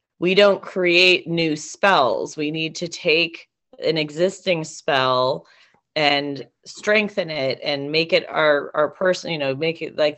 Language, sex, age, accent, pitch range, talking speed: English, female, 30-49, American, 145-180 Hz, 155 wpm